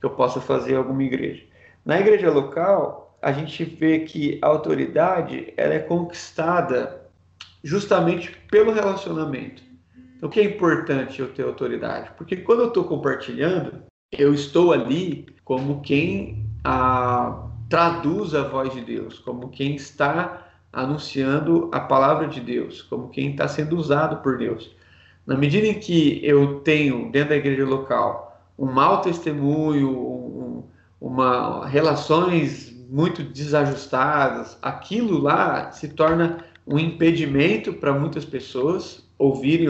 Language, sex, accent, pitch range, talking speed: Portuguese, male, Brazilian, 130-170 Hz, 135 wpm